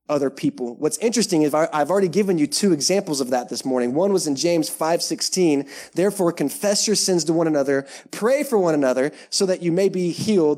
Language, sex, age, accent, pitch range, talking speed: English, male, 20-39, American, 140-215 Hz, 215 wpm